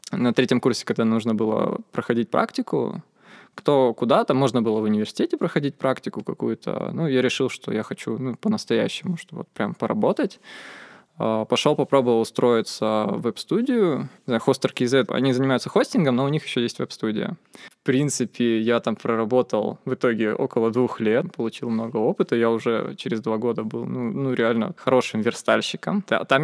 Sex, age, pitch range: male, 20-39, 115-135 Hz